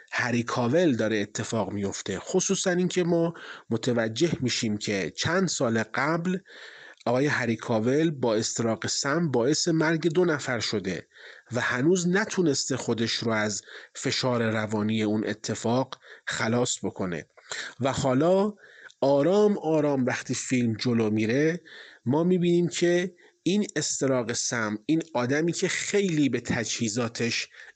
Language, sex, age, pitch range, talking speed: Persian, male, 30-49, 115-160 Hz, 120 wpm